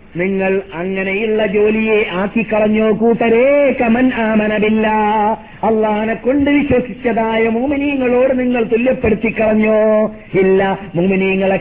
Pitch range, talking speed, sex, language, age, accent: 205-230 Hz, 80 wpm, male, Malayalam, 50-69, native